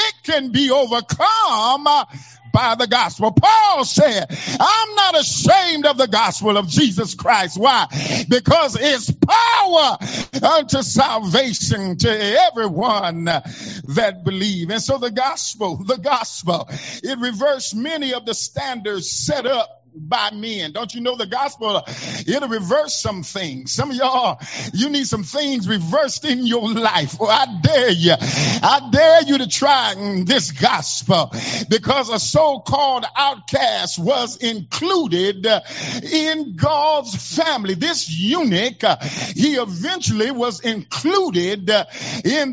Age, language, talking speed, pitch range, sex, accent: 50-69, English, 130 wpm, 200-300 Hz, male, American